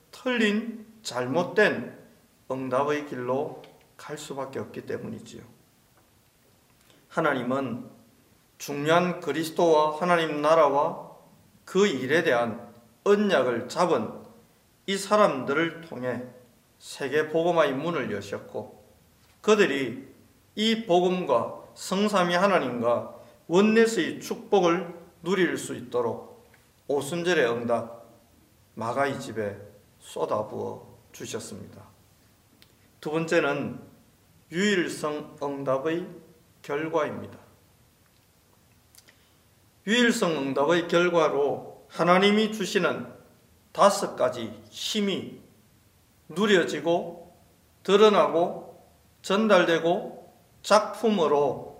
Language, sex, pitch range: Korean, male, 120-190 Hz